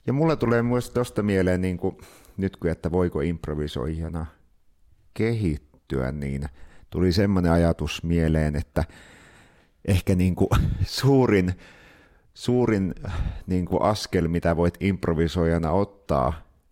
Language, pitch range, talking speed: Finnish, 80-95 Hz, 115 wpm